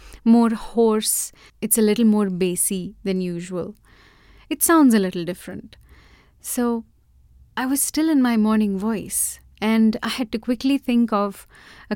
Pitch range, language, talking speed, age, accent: 195-240 Hz, English, 150 wpm, 30-49, Indian